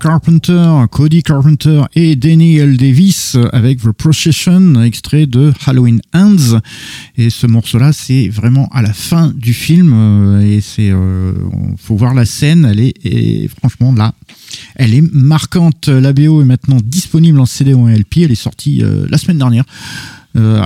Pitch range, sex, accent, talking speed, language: 105-140 Hz, male, French, 165 wpm, French